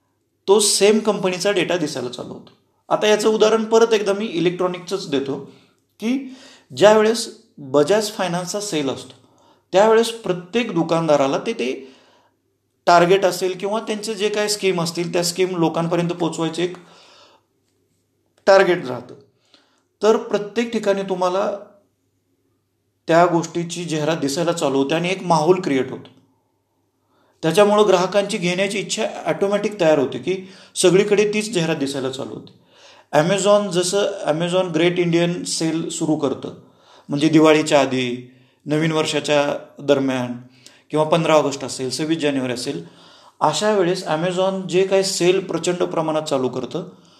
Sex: male